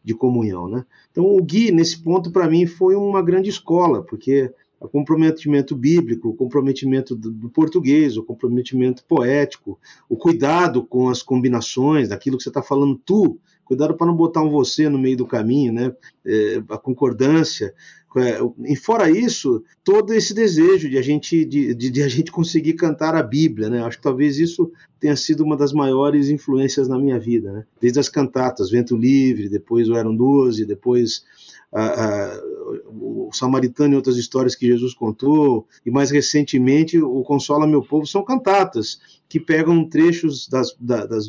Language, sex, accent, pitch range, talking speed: Portuguese, male, Brazilian, 130-170 Hz, 165 wpm